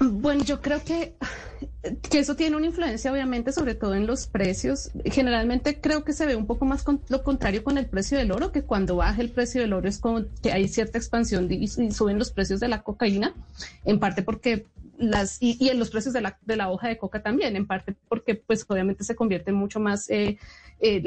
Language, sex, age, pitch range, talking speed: Spanish, female, 30-49, 200-250 Hz, 220 wpm